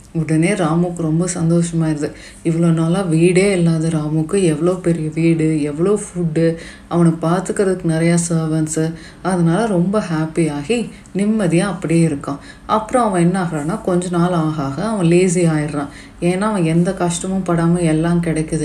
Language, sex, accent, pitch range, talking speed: Tamil, female, native, 160-185 Hz, 130 wpm